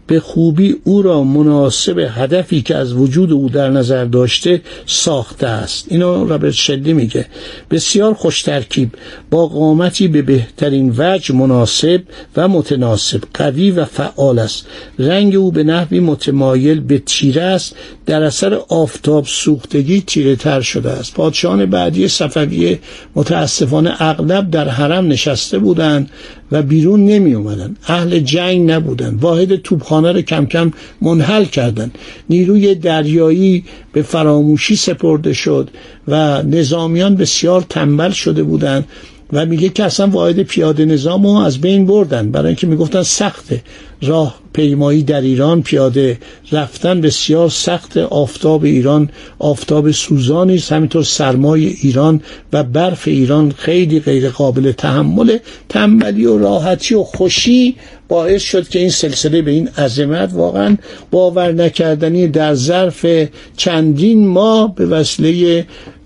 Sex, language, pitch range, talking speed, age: male, Persian, 140-175 Hz, 130 wpm, 60-79